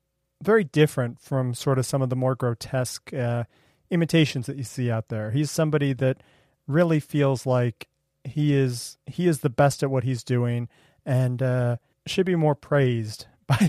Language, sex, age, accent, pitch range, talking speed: English, male, 30-49, American, 120-145 Hz, 175 wpm